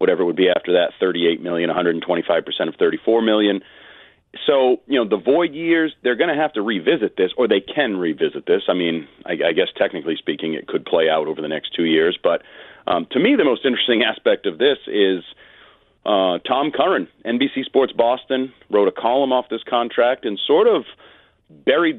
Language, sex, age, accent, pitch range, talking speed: English, male, 40-59, American, 100-165 Hz, 195 wpm